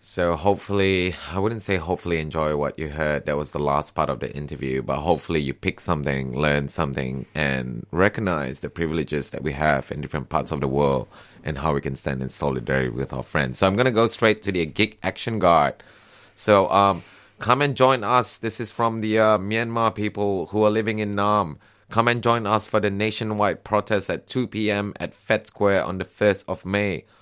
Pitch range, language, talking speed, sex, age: 80-105 Hz, English, 210 wpm, male, 30-49